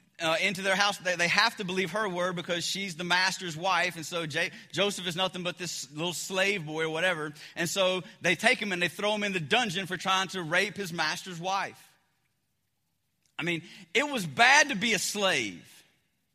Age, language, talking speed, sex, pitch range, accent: 30-49, English, 205 wpm, male, 175-235 Hz, American